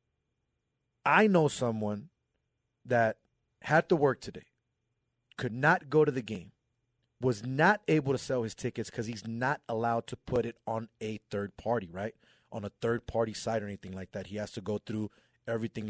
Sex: male